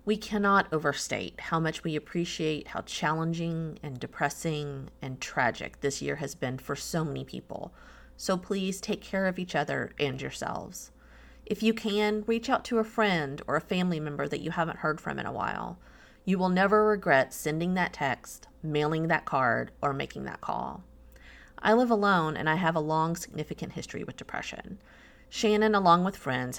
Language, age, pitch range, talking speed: English, 30-49, 145-200 Hz, 180 wpm